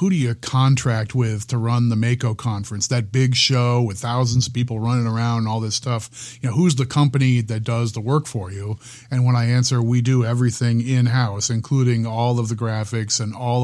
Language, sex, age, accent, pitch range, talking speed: English, male, 30-49, American, 120-135 Hz, 220 wpm